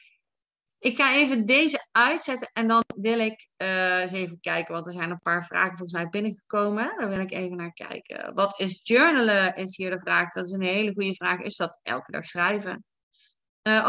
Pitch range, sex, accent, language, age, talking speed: 185-235 Hz, female, Dutch, Dutch, 20-39, 205 wpm